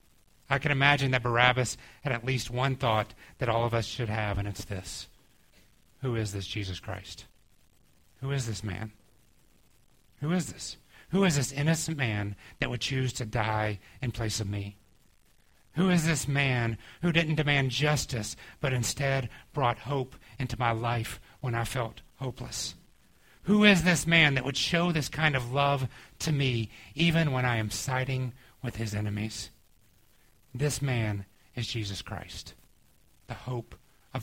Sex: male